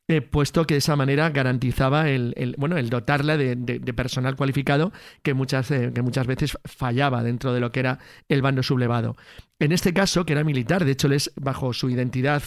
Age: 40-59